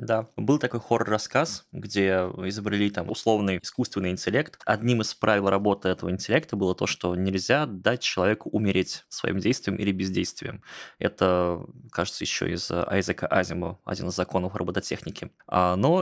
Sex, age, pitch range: male, 20-39, 95-115 Hz